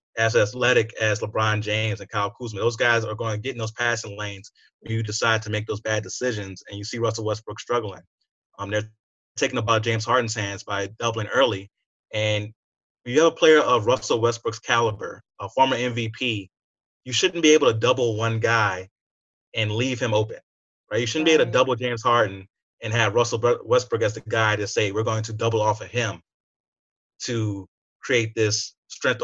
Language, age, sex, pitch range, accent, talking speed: English, 30-49, male, 105-130 Hz, American, 195 wpm